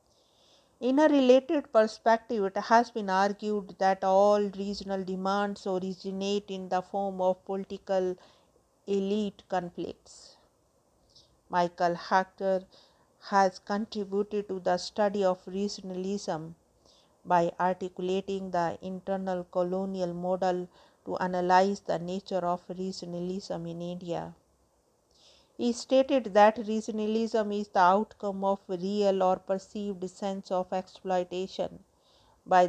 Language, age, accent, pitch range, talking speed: English, 50-69, Indian, 180-200 Hz, 105 wpm